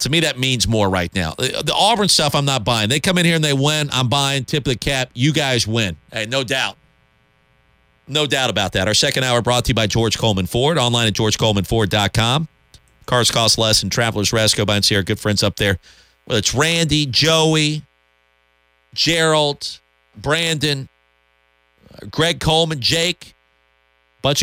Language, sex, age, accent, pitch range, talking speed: English, male, 40-59, American, 90-130 Hz, 185 wpm